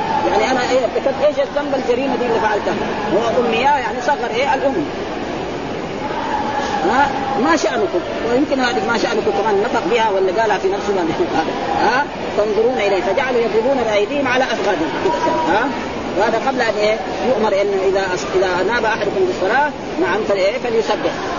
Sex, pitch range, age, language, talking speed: female, 215-295 Hz, 30-49, Arabic, 150 wpm